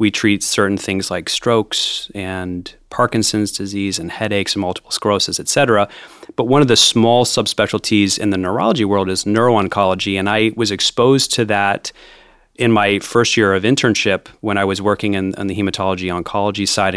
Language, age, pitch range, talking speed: English, 30-49, 95-110 Hz, 175 wpm